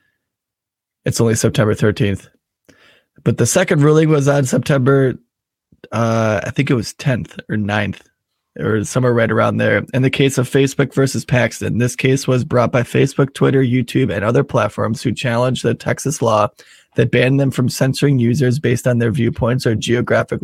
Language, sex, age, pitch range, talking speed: English, male, 20-39, 115-135 Hz, 175 wpm